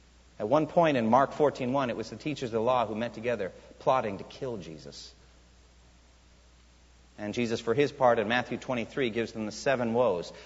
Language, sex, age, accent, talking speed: English, male, 50-69, American, 190 wpm